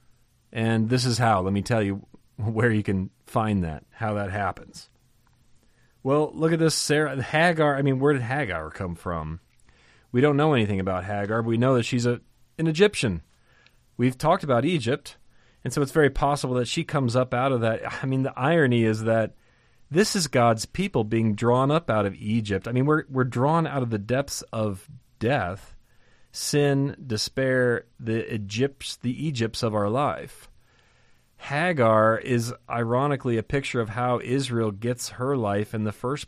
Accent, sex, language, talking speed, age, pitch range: American, male, English, 180 wpm, 30-49, 110-135 Hz